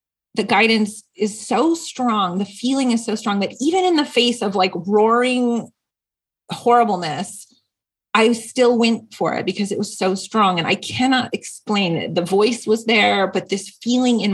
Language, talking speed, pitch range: English, 175 wpm, 190-235 Hz